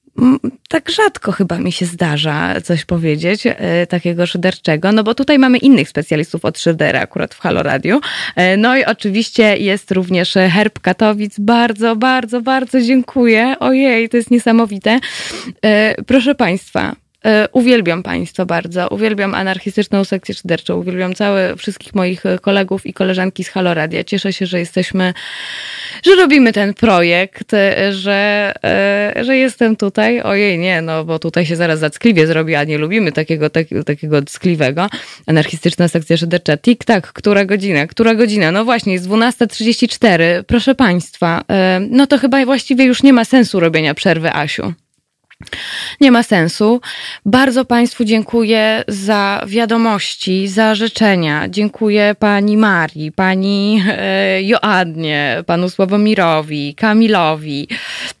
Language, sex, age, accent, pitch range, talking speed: Polish, female, 20-39, native, 175-230 Hz, 130 wpm